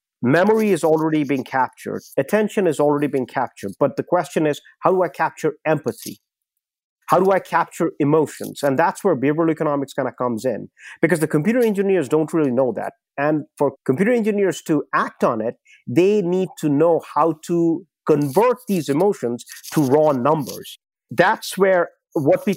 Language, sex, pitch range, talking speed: English, male, 145-180 Hz, 175 wpm